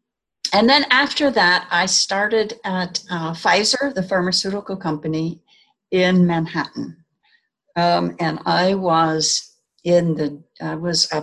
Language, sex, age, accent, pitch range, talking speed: English, female, 60-79, American, 155-190 Hz, 125 wpm